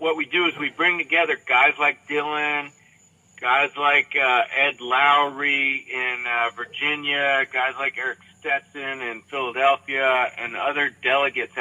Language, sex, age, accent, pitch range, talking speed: English, male, 50-69, American, 125-150 Hz, 140 wpm